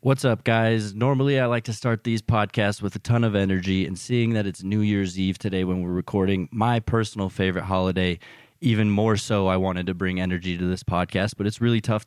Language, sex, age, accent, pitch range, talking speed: English, male, 20-39, American, 95-105 Hz, 225 wpm